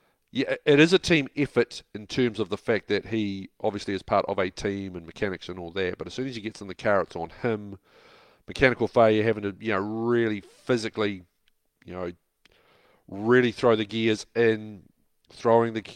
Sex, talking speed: male, 200 wpm